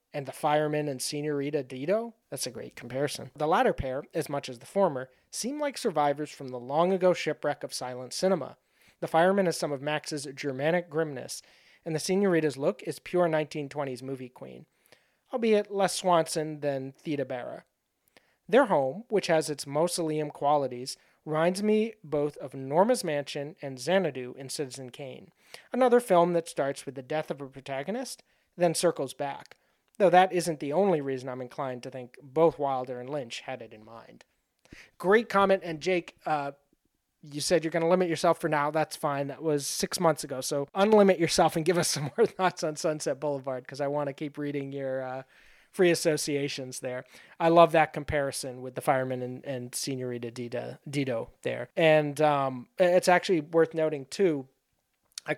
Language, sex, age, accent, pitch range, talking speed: English, male, 30-49, American, 135-170 Hz, 180 wpm